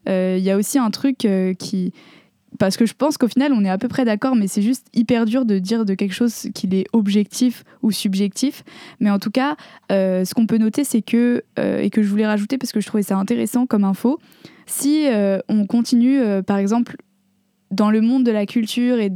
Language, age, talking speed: French, 20-39, 235 wpm